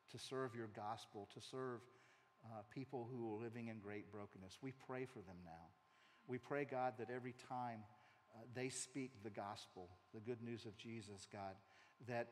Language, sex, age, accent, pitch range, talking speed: English, male, 50-69, American, 105-125 Hz, 180 wpm